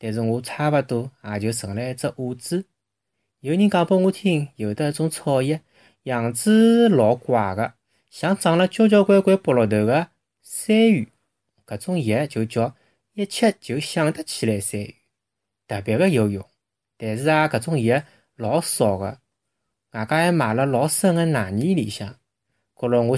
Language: Chinese